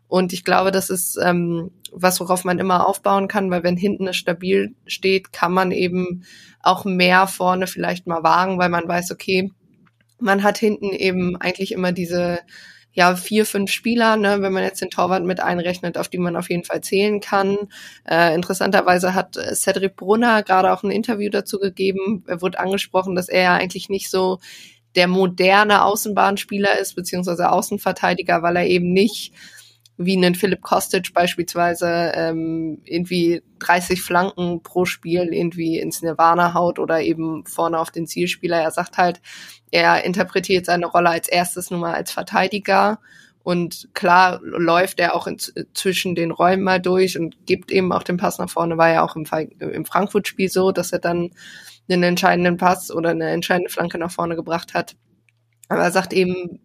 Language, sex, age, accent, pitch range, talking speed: German, female, 20-39, German, 175-195 Hz, 175 wpm